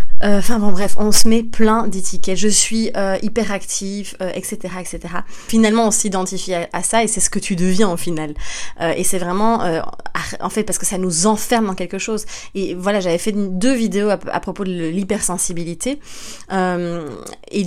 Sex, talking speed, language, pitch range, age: female, 190 wpm, French, 185-225 Hz, 20-39